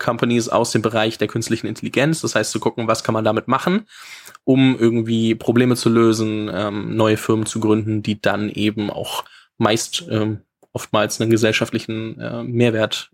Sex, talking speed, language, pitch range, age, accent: male, 155 wpm, German, 110-130 Hz, 20-39, German